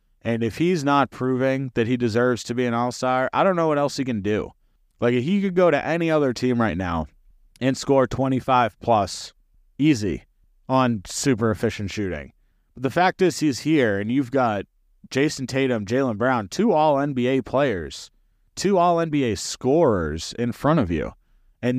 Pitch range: 105-135 Hz